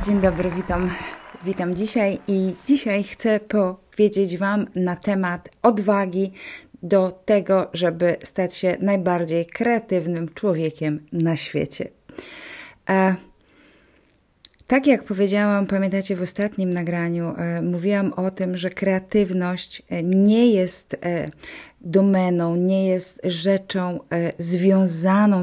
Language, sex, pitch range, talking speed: Polish, female, 175-195 Hz, 100 wpm